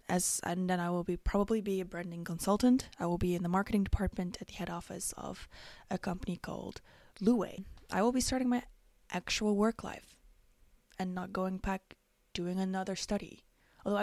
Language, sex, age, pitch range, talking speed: English, female, 20-39, 180-210 Hz, 185 wpm